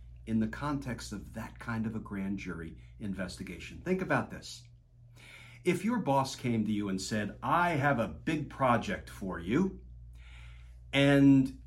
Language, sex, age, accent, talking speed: English, male, 50-69, American, 155 wpm